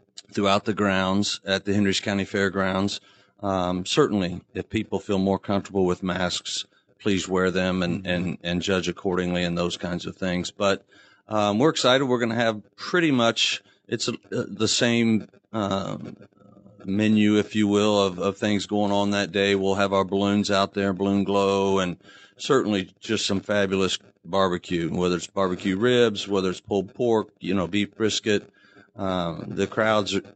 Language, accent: English, American